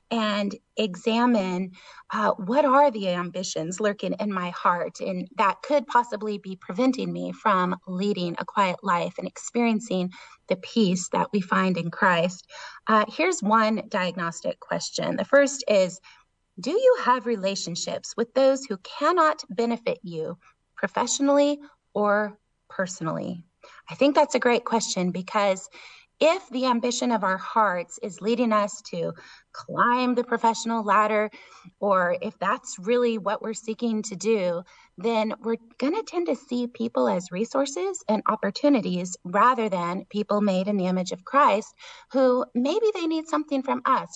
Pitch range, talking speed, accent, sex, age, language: 190-260 Hz, 150 wpm, American, female, 30-49, English